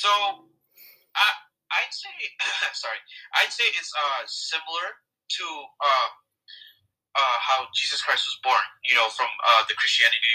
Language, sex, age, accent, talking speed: English, male, 20-39, American, 140 wpm